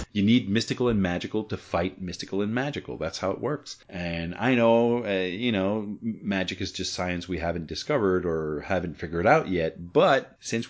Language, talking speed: English, 190 wpm